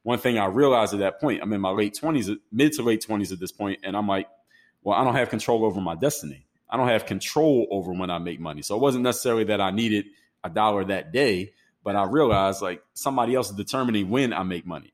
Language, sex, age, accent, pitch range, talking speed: English, male, 30-49, American, 95-115 Hz, 250 wpm